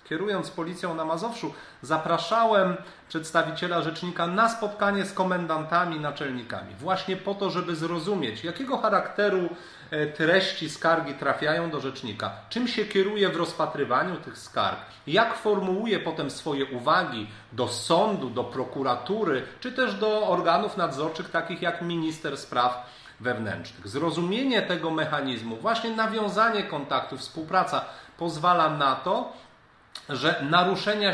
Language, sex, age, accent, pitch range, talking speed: Polish, male, 40-59, native, 155-200 Hz, 120 wpm